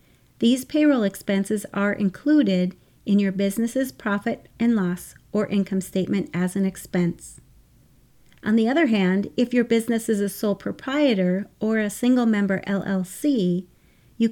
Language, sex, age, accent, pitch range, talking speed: English, female, 40-59, American, 190-245 Hz, 145 wpm